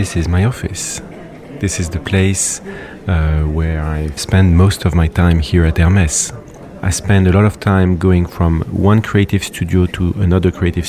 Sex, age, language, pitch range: male, 40-59, Korean, 85-100 Hz